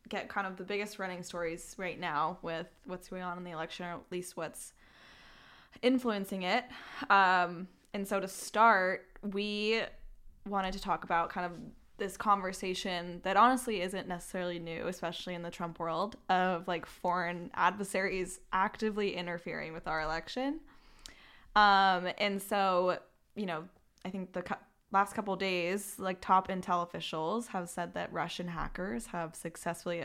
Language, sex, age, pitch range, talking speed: English, female, 10-29, 175-200 Hz, 155 wpm